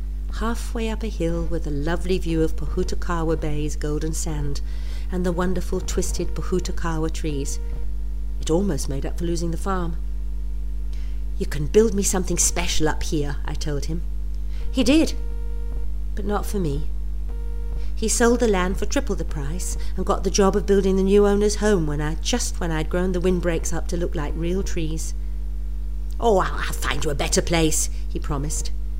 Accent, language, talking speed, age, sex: British, English, 175 wpm, 50-69, female